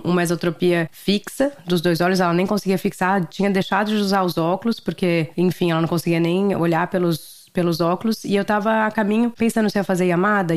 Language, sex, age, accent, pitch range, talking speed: Portuguese, female, 20-39, Brazilian, 175-220 Hz, 210 wpm